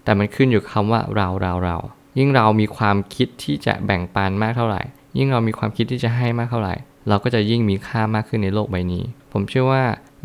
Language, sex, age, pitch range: Thai, male, 20-39, 100-120 Hz